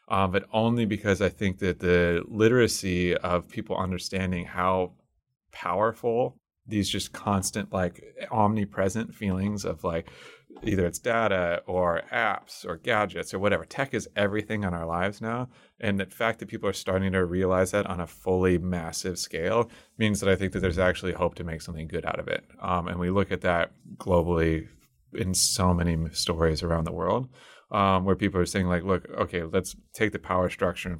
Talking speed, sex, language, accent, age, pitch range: 185 wpm, male, English, American, 30-49, 85-100 Hz